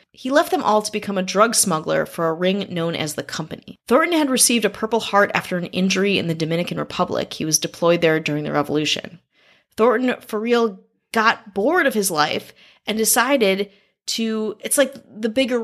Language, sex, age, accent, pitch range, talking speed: English, female, 30-49, American, 175-230 Hz, 195 wpm